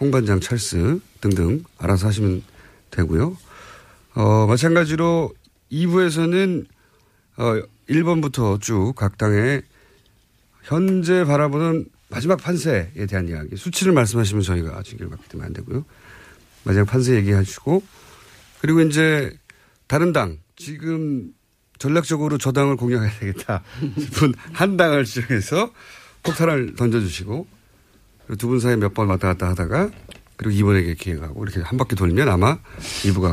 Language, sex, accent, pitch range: Korean, male, native, 100-160 Hz